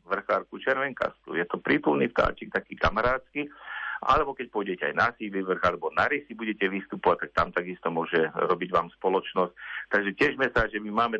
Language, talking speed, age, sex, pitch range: Slovak, 170 wpm, 50-69, male, 95-105 Hz